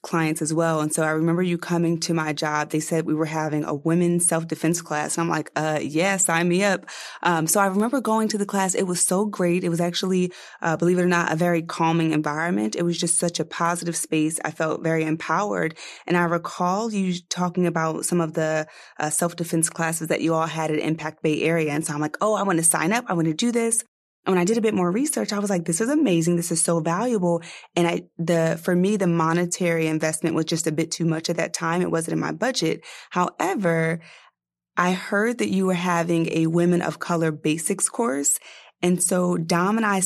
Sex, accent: female, American